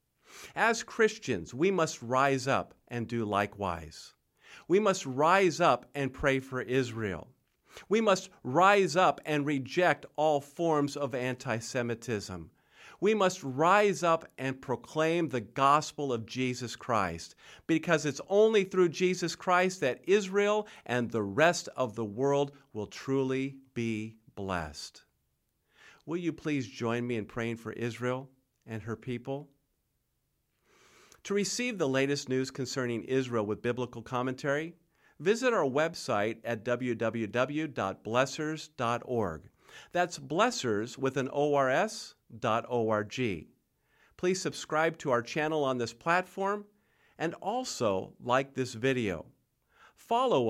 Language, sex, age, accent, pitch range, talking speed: English, male, 50-69, American, 120-165 Hz, 125 wpm